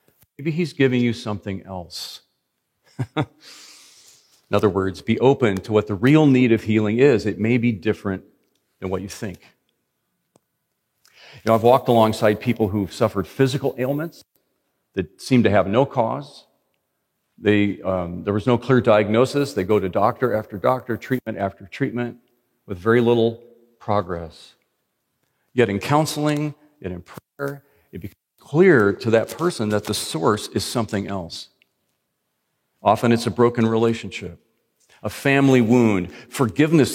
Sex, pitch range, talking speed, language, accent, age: male, 100-125 Hz, 145 wpm, English, American, 40-59